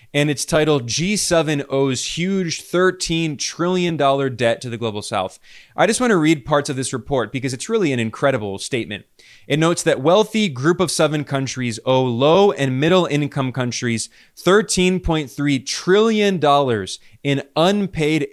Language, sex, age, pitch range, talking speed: English, male, 20-39, 130-170 Hz, 150 wpm